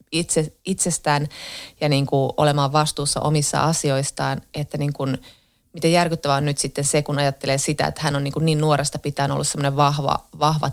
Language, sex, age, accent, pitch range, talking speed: Finnish, female, 30-49, native, 145-170 Hz, 175 wpm